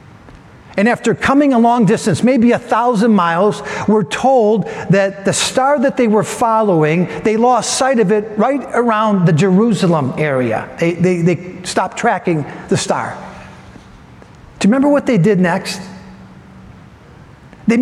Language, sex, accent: English, male, American